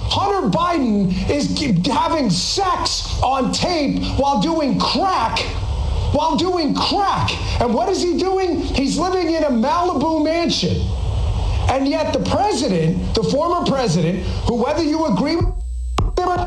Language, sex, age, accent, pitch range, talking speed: English, male, 40-59, American, 185-315 Hz, 130 wpm